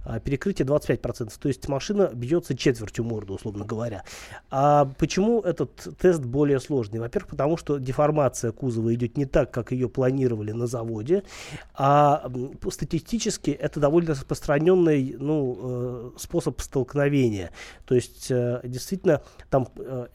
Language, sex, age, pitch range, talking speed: Russian, male, 30-49, 125-150 Hz, 120 wpm